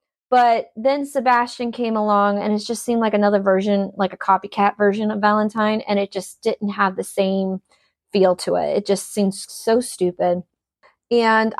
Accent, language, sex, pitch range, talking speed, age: American, English, female, 195-230 Hz, 175 wpm, 20-39